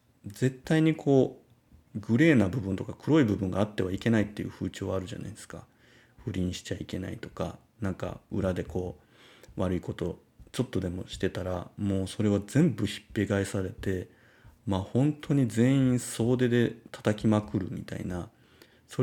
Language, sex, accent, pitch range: Japanese, male, native, 95-120 Hz